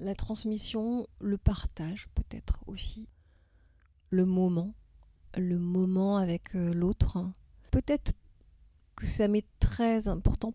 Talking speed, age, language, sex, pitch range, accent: 100 wpm, 30-49, French, female, 160-195 Hz, French